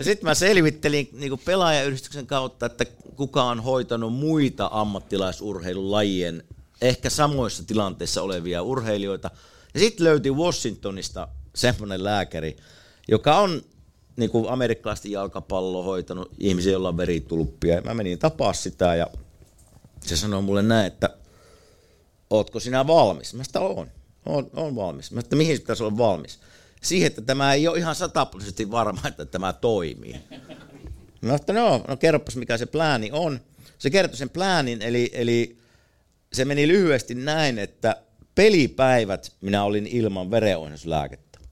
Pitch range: 95-140 Hz